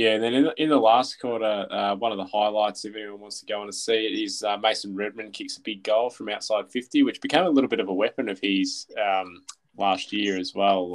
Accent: Australian